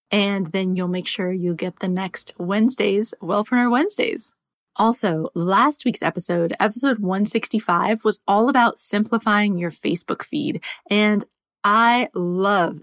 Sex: female